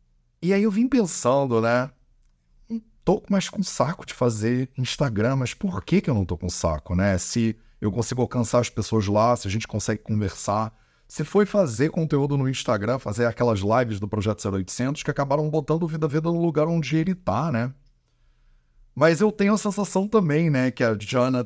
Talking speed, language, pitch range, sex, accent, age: 195 wpm, Portuguese, 100-145 Hz, male, Brazilian, 30-49